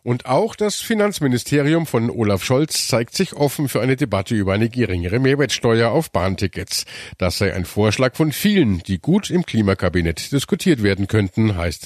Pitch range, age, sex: 100-145 Hz, 50-69, male